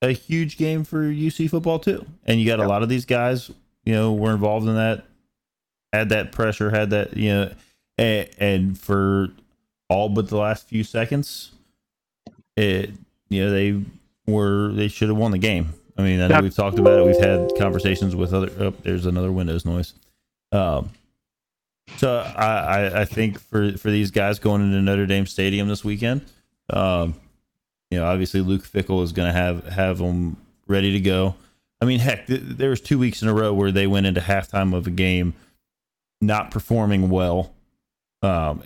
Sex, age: male, 20-39